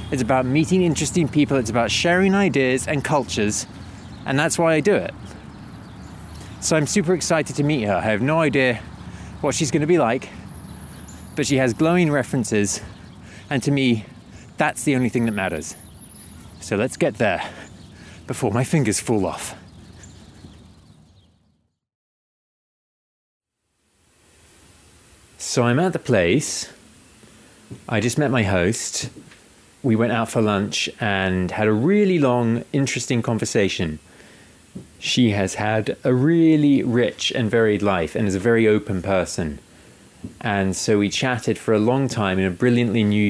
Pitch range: 95-130 Hz